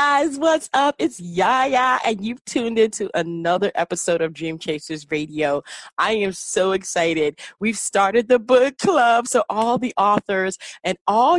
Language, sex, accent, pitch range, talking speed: English, female, American, 175-240 Hz, 160 wpm